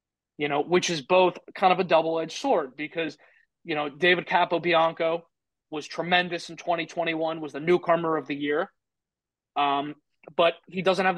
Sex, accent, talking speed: male, American, 185 wpm